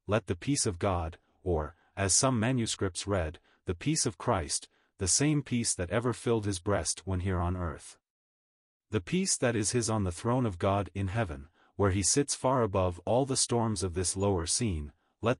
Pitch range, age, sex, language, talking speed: 90-120 Hz, 30-49, male, English, 200 wpm